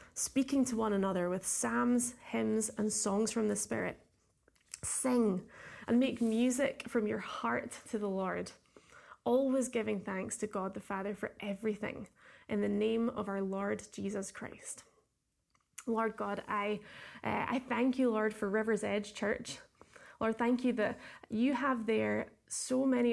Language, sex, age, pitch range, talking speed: English, female, 20-39, 210-240 Hz, 155 wpm